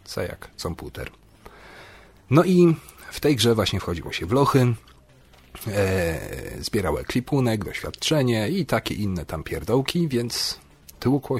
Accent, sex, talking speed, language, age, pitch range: native, male, 120 wpm, Polish, 40-59, 85-120 Hz